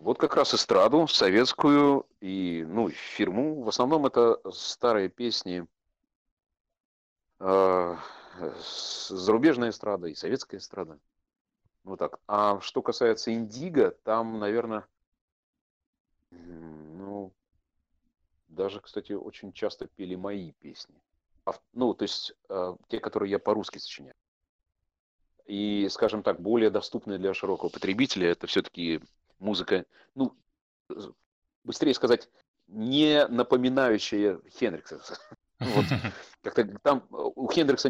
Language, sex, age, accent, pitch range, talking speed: Russian, male, 40-59, native, 90-115 Hz, 110 wpm